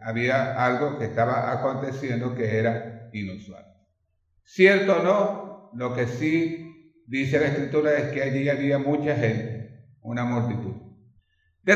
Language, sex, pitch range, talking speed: Spanish, male, 115-150 Hz, 135 wpm